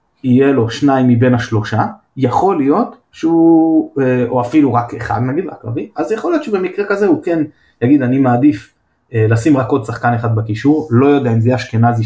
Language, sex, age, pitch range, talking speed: Hebrew, male, 20-39, 115-145 Hz, 175 wpm